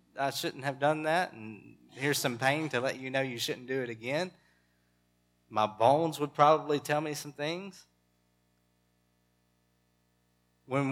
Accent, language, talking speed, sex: American, English, 150 wpm, male